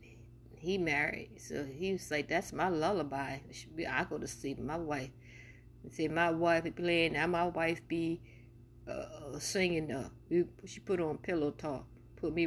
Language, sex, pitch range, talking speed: English, female, 120-175 Hz, 165 wpm